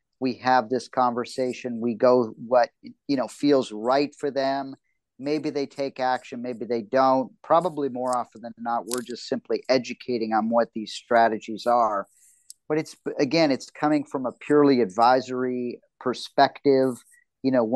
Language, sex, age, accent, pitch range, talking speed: English, male, 40-59, American, 115-135 Hz, 155 wpm